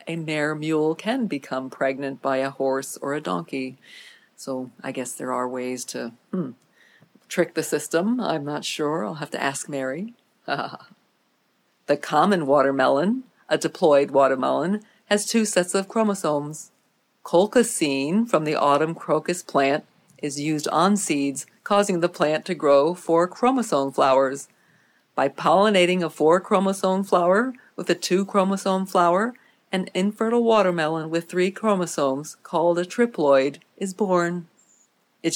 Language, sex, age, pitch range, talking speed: English, female, 50-69, 145-195 Hz, 135 wpm